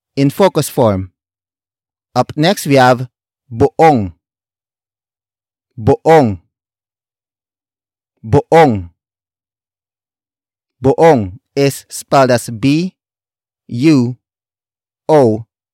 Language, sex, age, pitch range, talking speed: English, male, 30-49, 95-135 Hz, 65 wpm